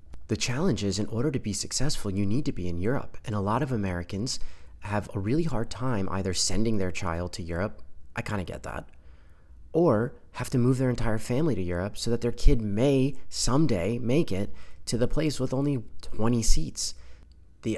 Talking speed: 205 wpm